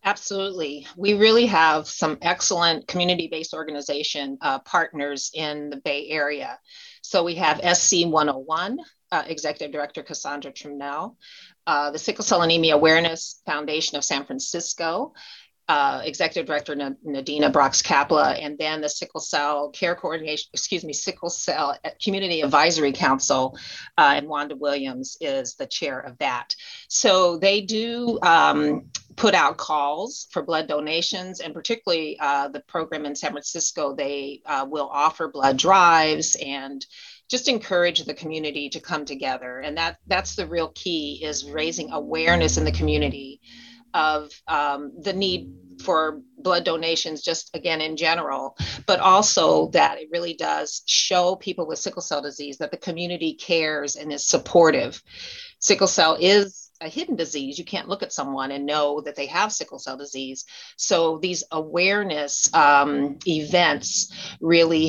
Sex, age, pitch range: female, 40-59, 145-180 Hz